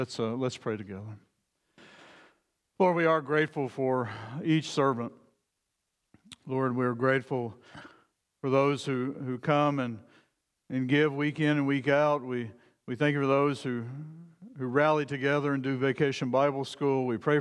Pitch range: 125-150 Hz